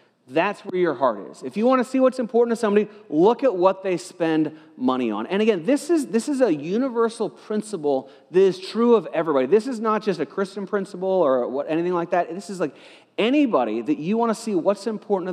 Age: 30-49